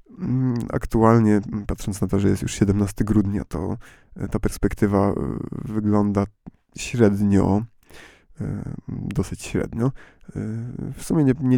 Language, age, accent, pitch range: Polish, 20-39, native, 100-115 Hz